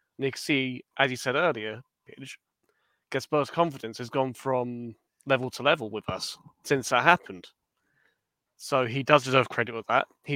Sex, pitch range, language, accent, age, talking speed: male, 120-140 Hz, English, British, 20-39, 170 wpm